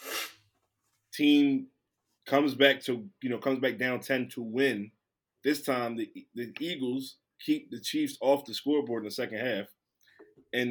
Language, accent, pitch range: English, American, 130-195 Hz